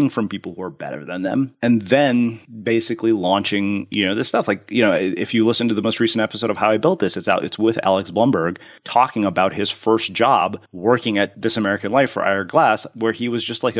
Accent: American